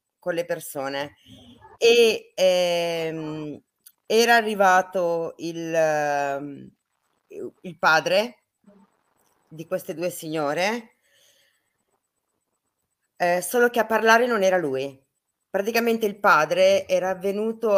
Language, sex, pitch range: Italian, female, 175-225 Hz